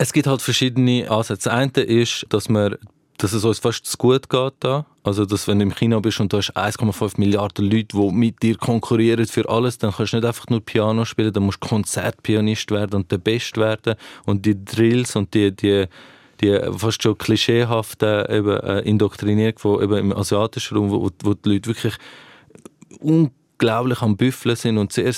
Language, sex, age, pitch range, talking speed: German, male, 20-39, 105-115 Hz, 190 wpm